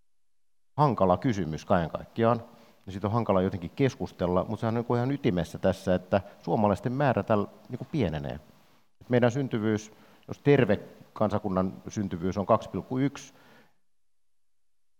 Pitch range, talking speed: 90-110 Hz, 130 wpm